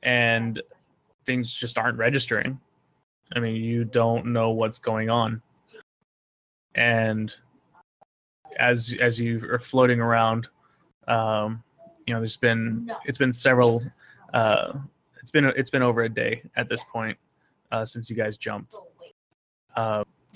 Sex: male